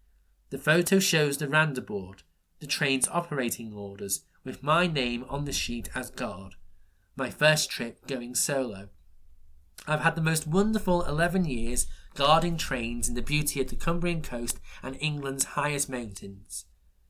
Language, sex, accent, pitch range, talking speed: English, male, British, 100-150 Hz, 145 wpm